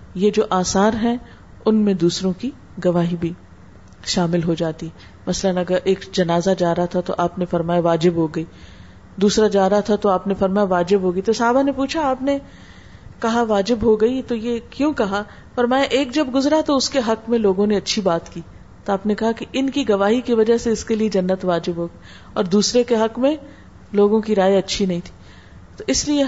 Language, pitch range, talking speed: Urdu, 175-230 Hz, 215 wpm